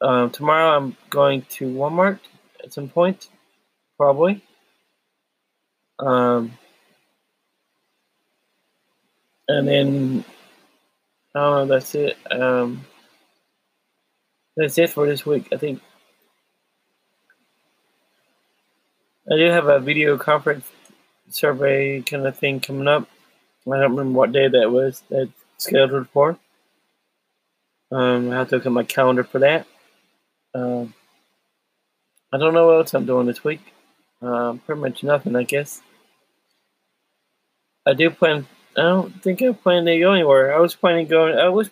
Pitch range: 130-155 Hz